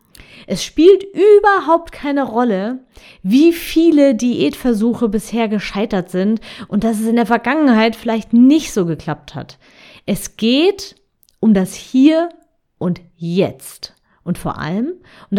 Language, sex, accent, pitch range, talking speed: German, female, German, 180-250 Hz, 130 wpm